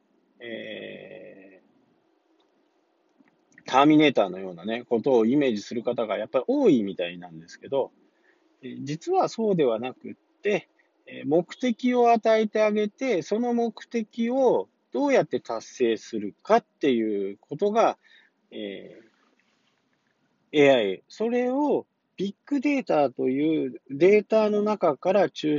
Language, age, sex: Japanese, 40-59, male